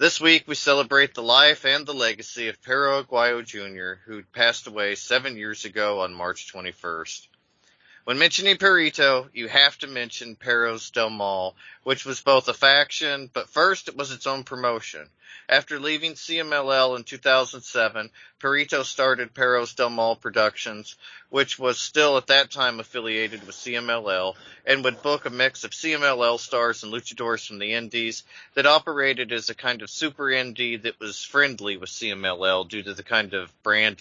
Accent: American